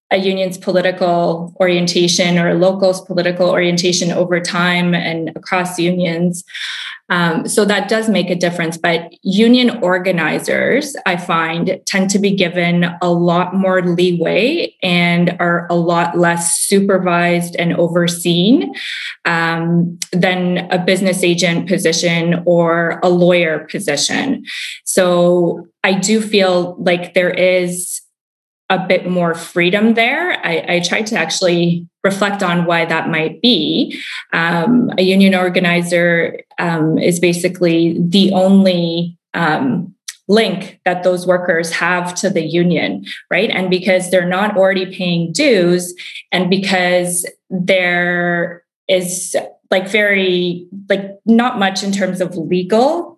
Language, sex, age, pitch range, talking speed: English, female, 20-39, 175-190 Hz, 130 wpm